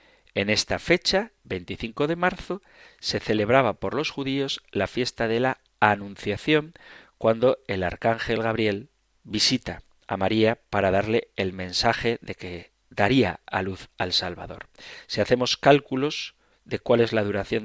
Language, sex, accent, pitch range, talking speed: Spanish, male, Spanish, 100-135 Hz, 145 wpm